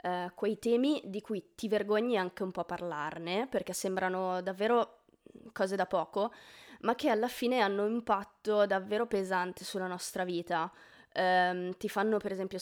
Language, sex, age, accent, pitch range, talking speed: Italian, female, 20-39, native, 185-235 Hz, 150 wpm